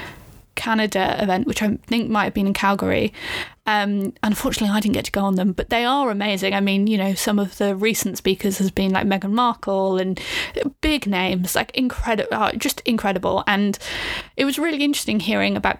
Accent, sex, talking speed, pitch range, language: British, female, 200 wpm, 200-230 Hz, English